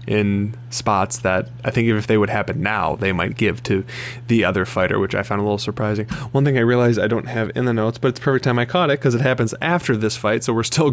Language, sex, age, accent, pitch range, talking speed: English, male, 20-39, American, 105-120 Hz, 275 wpm